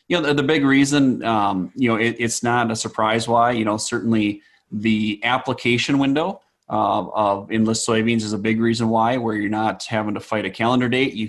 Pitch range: 110-115 Hz